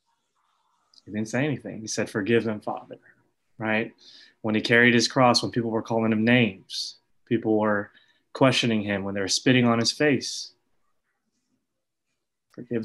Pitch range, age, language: 105-120 Hz, 20-39, English